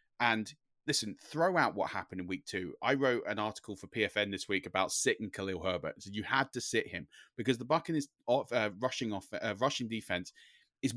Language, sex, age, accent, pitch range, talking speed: English, male, 30-49, British, 105-140 Hz, 195 wpm